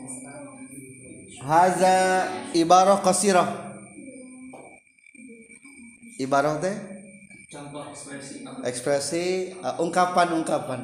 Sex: male